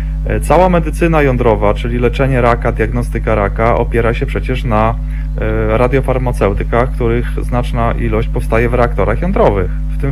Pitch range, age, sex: 115-145 Hz, 30-49, male